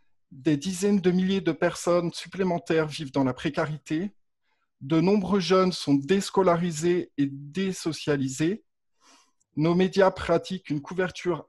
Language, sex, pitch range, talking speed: French, male, 145-180 Hz, 120 wpm